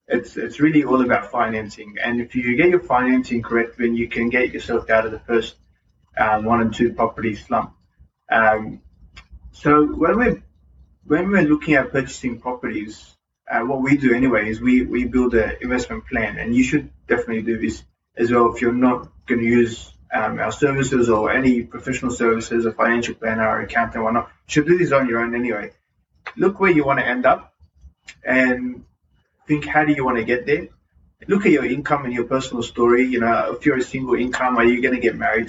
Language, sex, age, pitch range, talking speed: English, male, 20-39, 115-130 Hz, 210 wpm